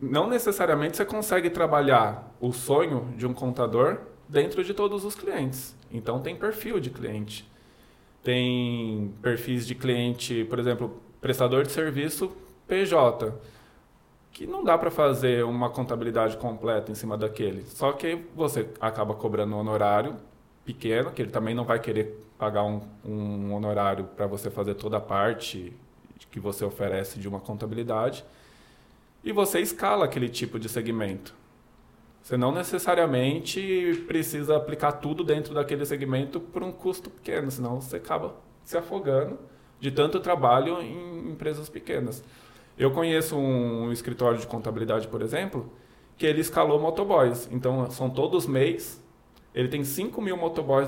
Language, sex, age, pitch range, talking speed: Portuguese, male, 20-39, 115-165 Hz, 145 wpm